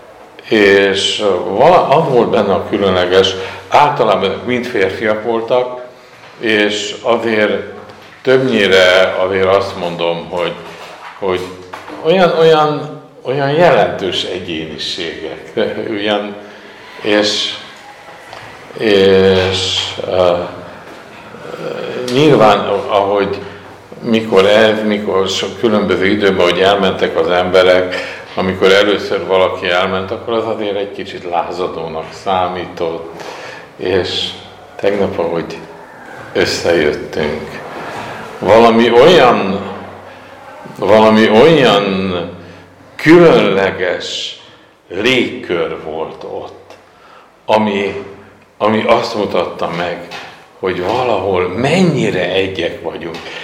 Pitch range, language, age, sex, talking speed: 95-115 Hz, Hungarian, 60-79, male, 80 wpm